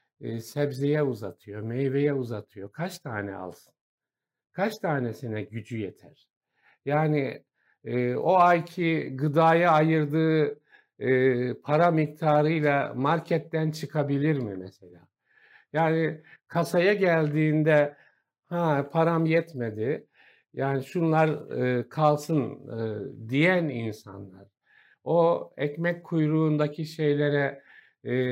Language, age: Turkish, 60-79